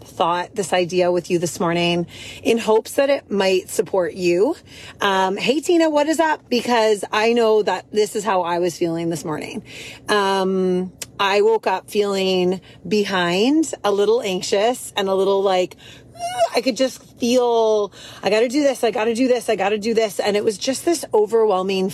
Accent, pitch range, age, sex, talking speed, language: American, 180-230 Hz, 30-49, female, 190 wpm, English